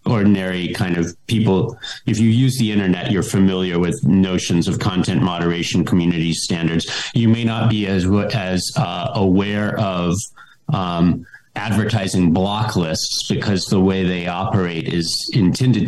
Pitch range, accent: 90-115 Hz, American